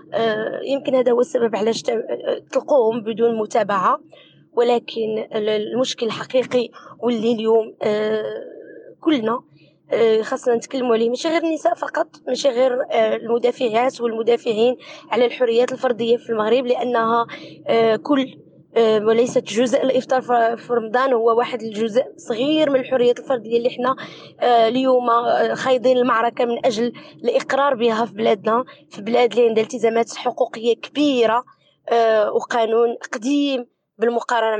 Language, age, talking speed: Arabic, 20-39, 115 wpm